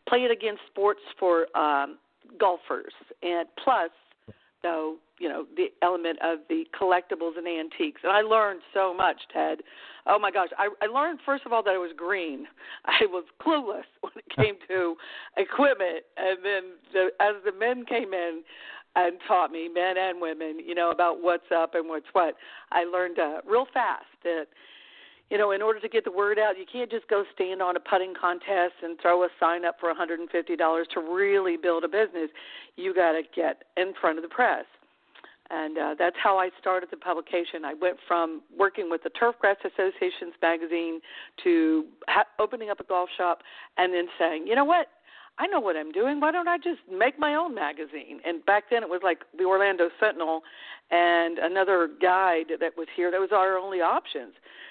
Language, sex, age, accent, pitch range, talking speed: English, female, 50-69, American, 170-215 Hz, 190 wpm